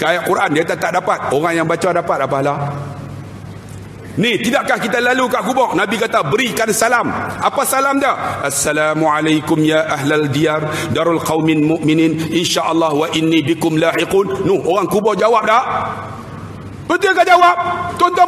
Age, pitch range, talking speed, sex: 50-69, 155-235 Hz, 145 wpm, male